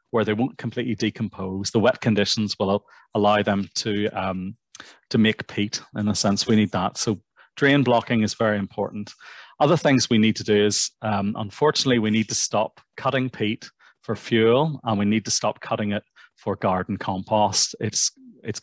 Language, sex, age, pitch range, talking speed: English, male, 30-49, 105-125 Hz, 180 wpm